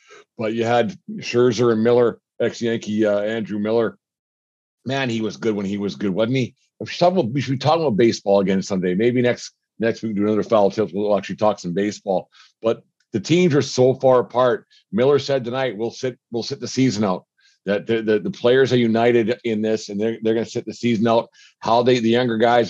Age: 50-69